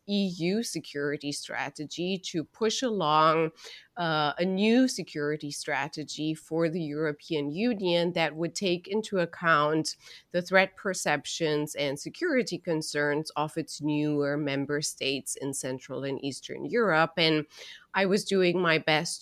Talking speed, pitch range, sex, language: 130 wpm, 150-180 Hz, female, English